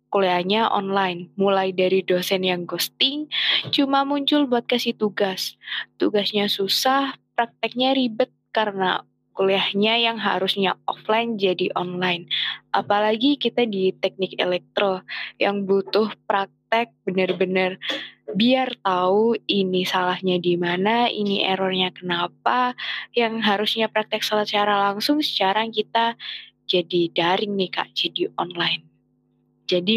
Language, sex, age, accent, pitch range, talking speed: Indonesian, female, 20-39, native, 185-220 Hz, 110 wpm